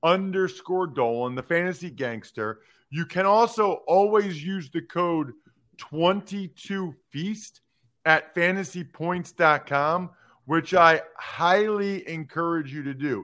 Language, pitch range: English, 135-180 Hz